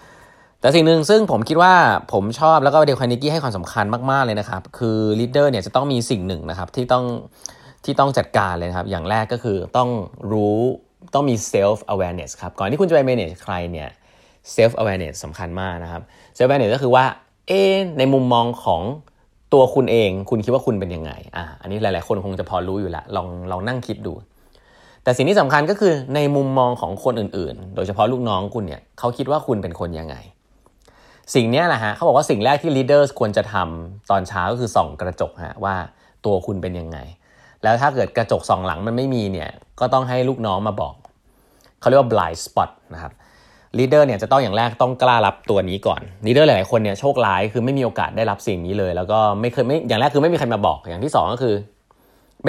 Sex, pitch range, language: male, 95-130 Hz, Thai